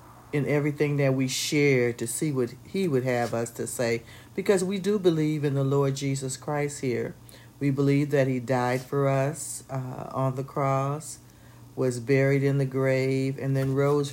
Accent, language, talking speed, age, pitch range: American, English, 185 wpm, 50-69, 125-145 Hz